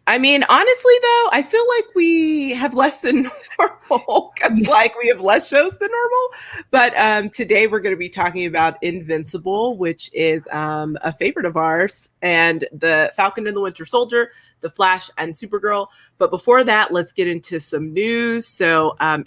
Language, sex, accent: English, female, American